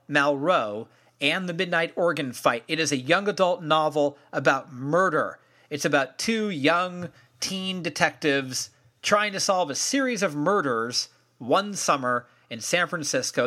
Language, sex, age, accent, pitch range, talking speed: English, male, 40-59, American, 130-180 Hz, 145 wpm